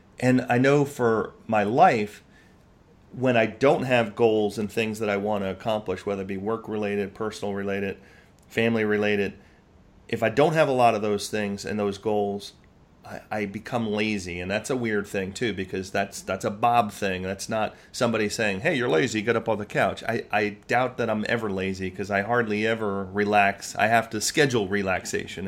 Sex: male